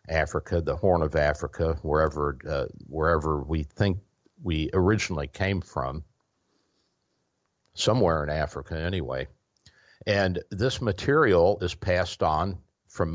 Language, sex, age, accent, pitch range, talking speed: English, male, 60-79, American, 80-95 Hz, 115 wpm